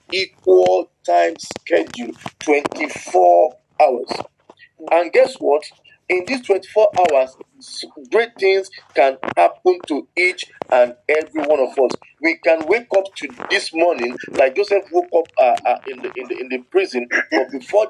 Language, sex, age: English, male, 40-59